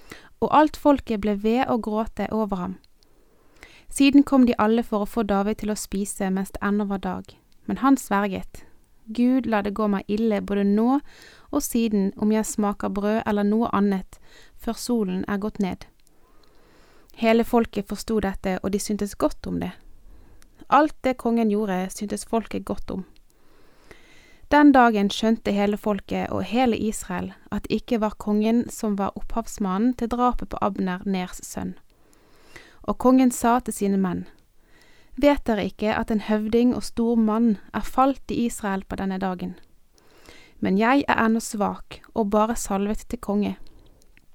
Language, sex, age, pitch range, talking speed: Danish, female, 30-49, 200-235 Hz, 160 wpm